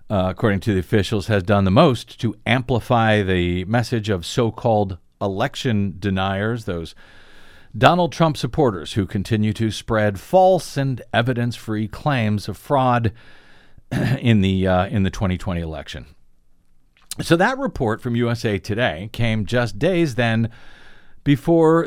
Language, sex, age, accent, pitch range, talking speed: English, male, 50-69, American, 105-150 Hz, 130 wpm